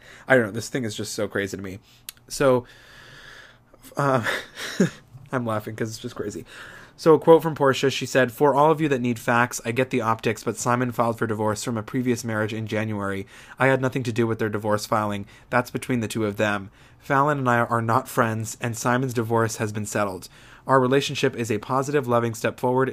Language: English